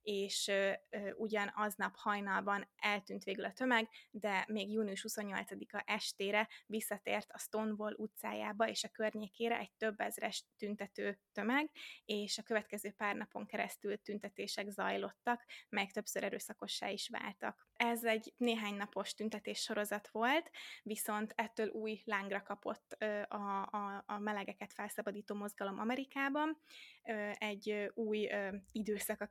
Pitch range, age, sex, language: 205-225 Hz, 20-39, female, Hungarian